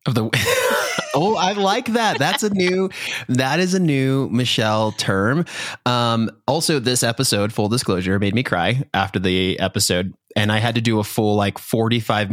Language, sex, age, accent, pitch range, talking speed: English, male, 20-39, American, 100-130 Hz, 175 wpm